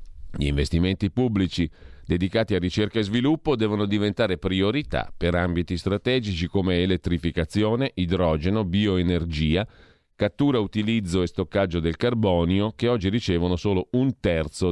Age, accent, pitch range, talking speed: 40-59, native, 85-110 Hz, 120 wpm